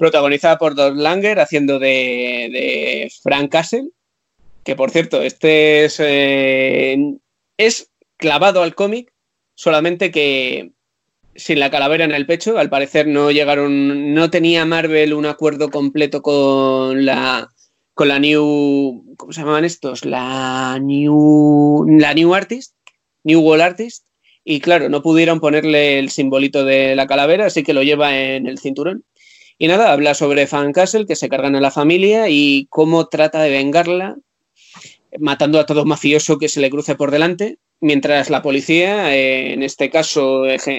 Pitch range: 140-165 Hz